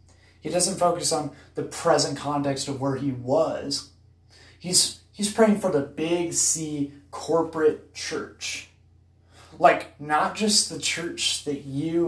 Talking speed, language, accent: 135 wpm, English, American